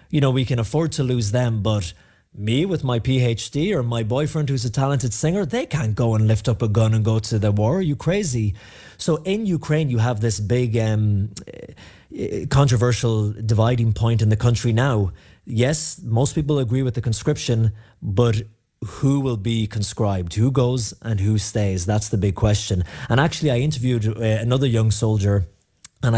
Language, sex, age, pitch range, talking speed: English, male, 30-49, 105-130 Hz, 185 wpm